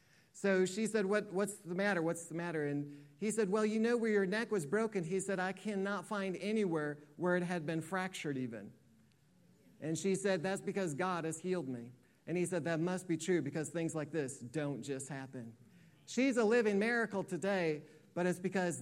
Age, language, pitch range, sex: 40-59, English, 165-220 Hz, male